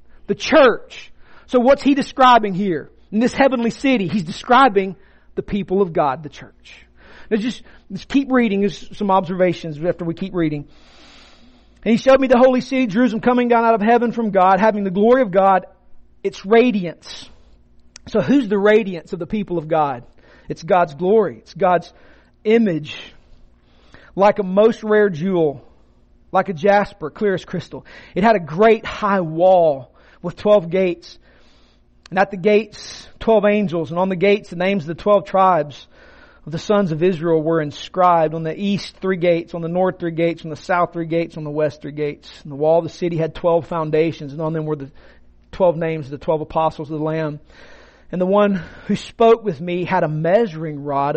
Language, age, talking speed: English, 40-59, 190 wpm